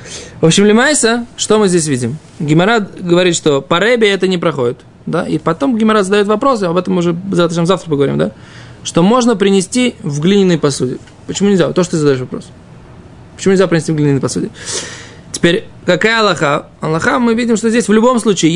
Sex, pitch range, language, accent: male, 155-205 Hz, Russian, native